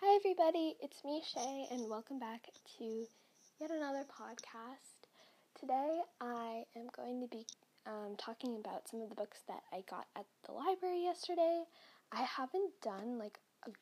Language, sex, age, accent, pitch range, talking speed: English, female, 10-29, American, 225-305 Hz, 160 wpm